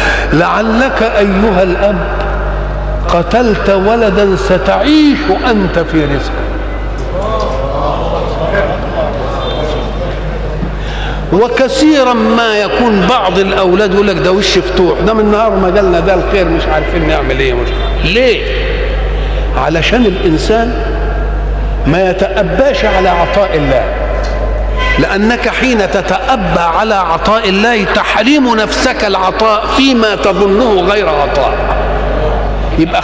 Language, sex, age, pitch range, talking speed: Arabic, male, 50-69, 185-235 Hz, 95 wpm